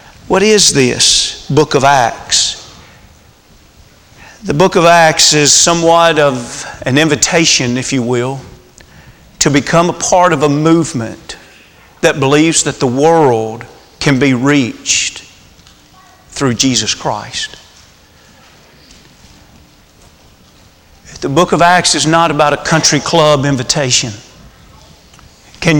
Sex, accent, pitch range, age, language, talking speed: male, American, 125-165 Hz, 40-59, English, 110 wpm